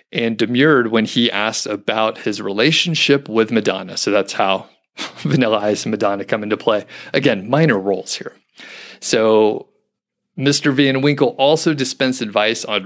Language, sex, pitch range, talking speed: English, male, 105-130 Hz, 150 wpm